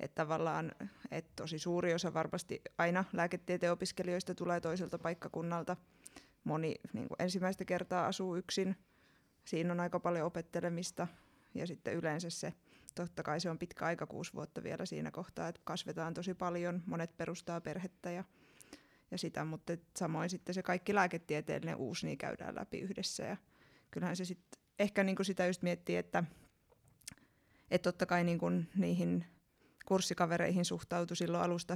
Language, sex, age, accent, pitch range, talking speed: Finnish, female, 20-39, native, 170-185 Hz, 150 wpm